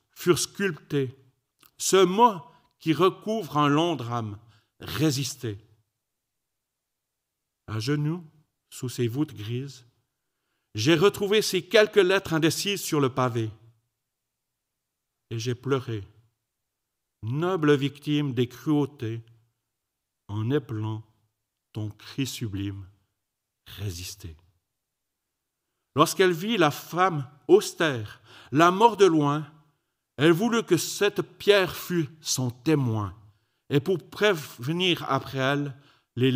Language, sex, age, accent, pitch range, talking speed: French, male, 50-69, French, 115-165 Hz, 105 wpm